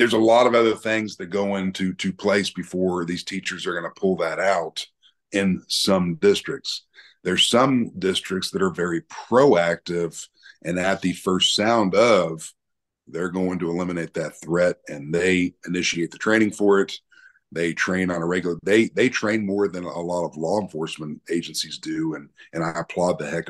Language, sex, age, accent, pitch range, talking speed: English, male, 50-69, American, 85-100 Hz, 185 wpm